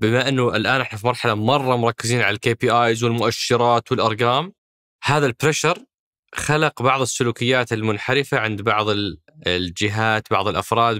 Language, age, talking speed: Arabic, 20-39, 135 wpm